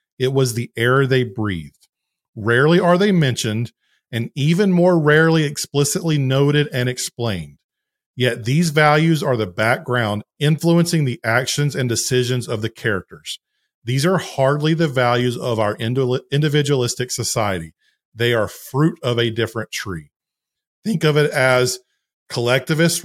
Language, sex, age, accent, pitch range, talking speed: English, male, 40-59, American, 115-150 Hz, 140 wpm